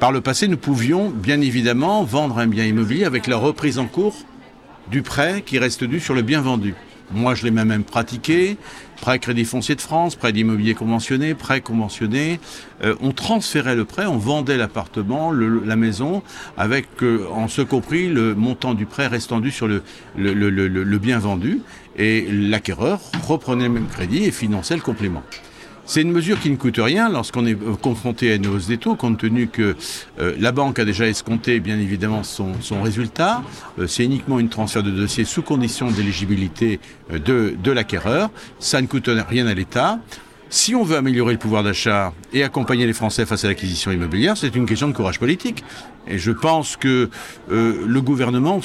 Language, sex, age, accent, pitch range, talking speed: French, male, 60-79, French, 110-140 Hz, 195 wpm